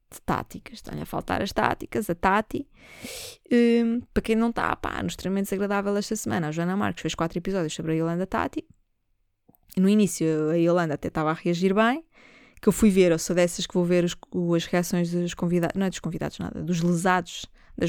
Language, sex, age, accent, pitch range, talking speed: Portuguese, female, 20-39, Brazilian, 180-245 Hz, 205 wpm